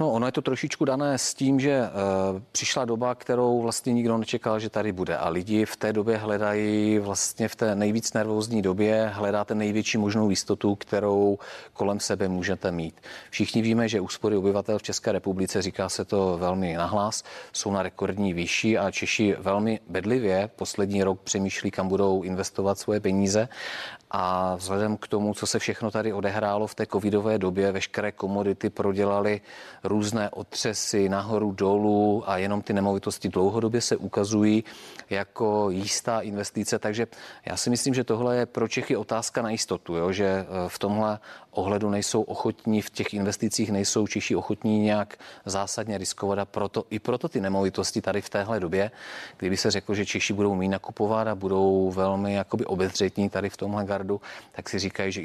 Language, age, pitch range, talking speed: Czech, 40-59, 95-110 Hz, 170 wpm